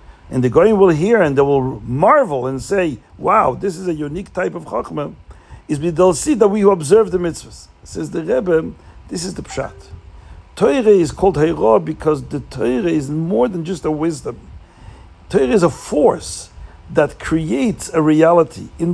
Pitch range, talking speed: 130-195 Hz, 185 wpm